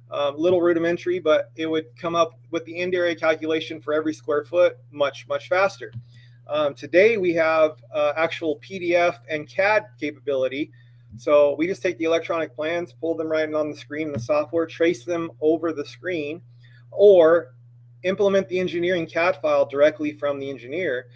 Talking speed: 180 wpm